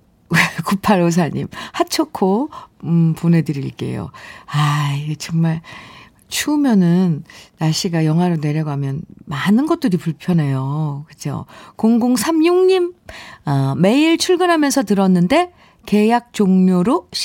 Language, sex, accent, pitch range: Korean, female, native, 165-240 Hz